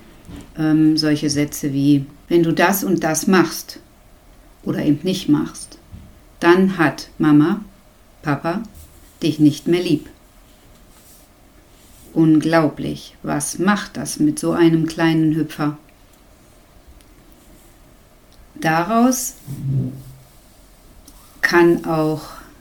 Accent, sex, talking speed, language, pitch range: German, female, 90 wpm, German, 150-185 Hz